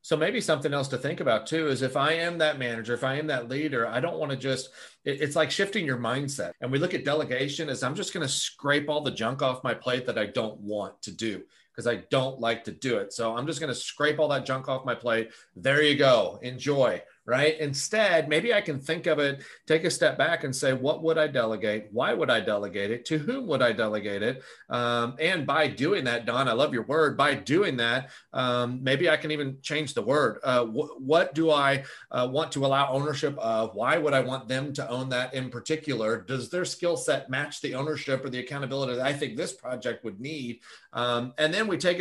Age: 40-59